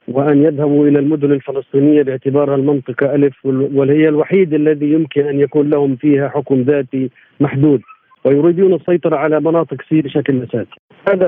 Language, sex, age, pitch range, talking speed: Arabic, male, 50-69, 145-175 Hz, 145 wpm